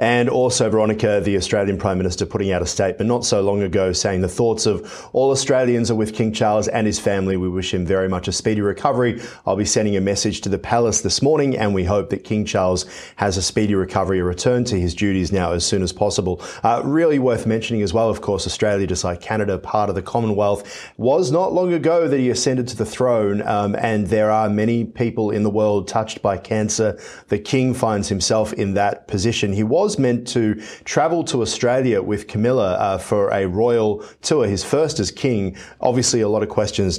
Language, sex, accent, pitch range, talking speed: English, male, Australian, 95-115 Hz, 215 wpm